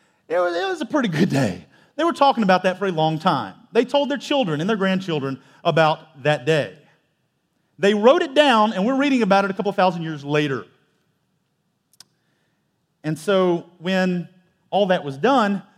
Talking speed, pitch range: 175 wpm, 175-230 Hz